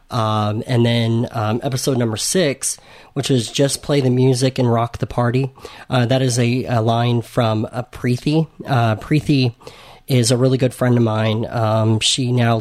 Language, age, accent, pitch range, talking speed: English, 30-49, American, 110-125 Hz, 180 wpm